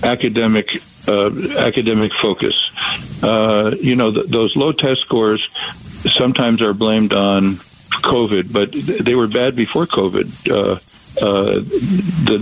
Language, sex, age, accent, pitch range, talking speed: English, male, 50-69, American, 105-120 Hz, 120 wpm